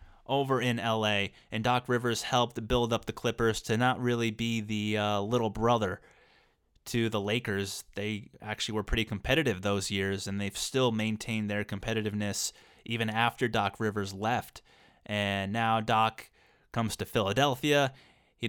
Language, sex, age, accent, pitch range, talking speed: English, male, 20-39, American, 105-125 Hz, 155 wpm